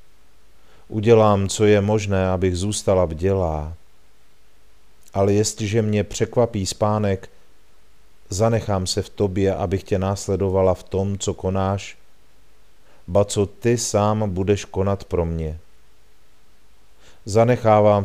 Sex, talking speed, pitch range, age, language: male, 110 wpm, 95-105 Hz, 40-59, Czech